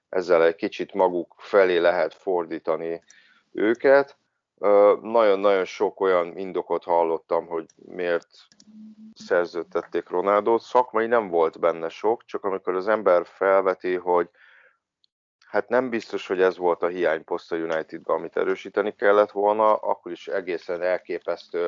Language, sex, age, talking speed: Hungarian, male, 30-49, 125 wpm